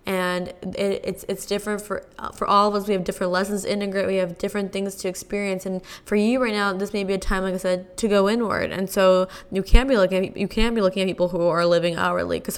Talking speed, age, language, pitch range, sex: 265 wpm, 10-29, English, 190-220 Hz, female